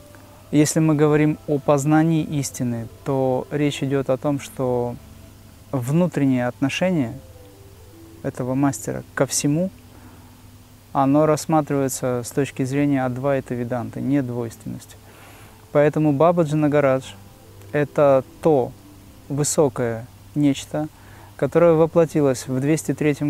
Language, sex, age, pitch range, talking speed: Russian, male, 30-49, 110-150 Hz, 100 wpm